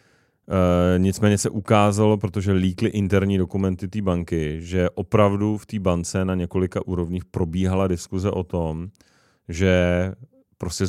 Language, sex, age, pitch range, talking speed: Czech, male, 30-49, 90-105 Hz, 130 wpm